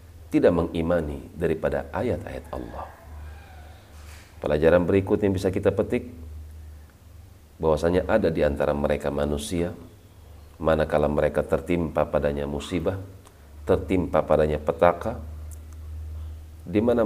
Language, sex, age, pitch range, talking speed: Indonesian, male, 40-59, 75-90 Hz, 90 wpm